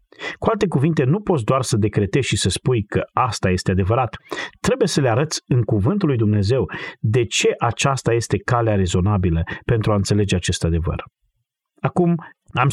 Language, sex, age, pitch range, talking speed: Romanian, male, 40-59, 105-145 Hz, 170 wpm